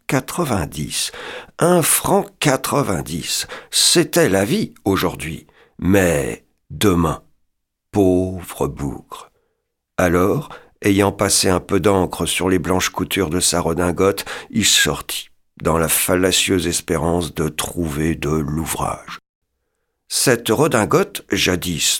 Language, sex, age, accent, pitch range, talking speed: French, male, 50-69, French, 90-140 Hz, 105 wpm